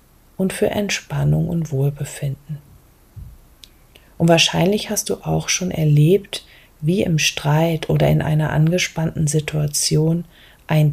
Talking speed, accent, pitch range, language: 115 wpm, German, 150-185 Hz, German